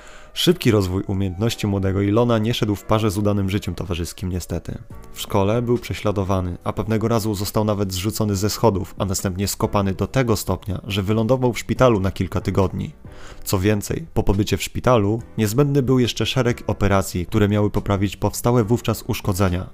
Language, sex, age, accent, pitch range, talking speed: Polish, male, 30-49, native, 95-115 Hz, 170 wpm